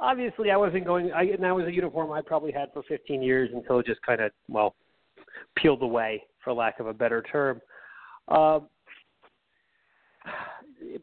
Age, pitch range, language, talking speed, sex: 40-59, 130-165 Hz, English, 170 wpm, male